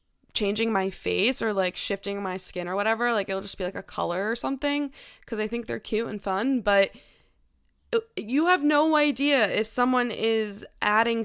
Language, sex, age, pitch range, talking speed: English, female, 20-39, 200-270 Hz, 190 wpm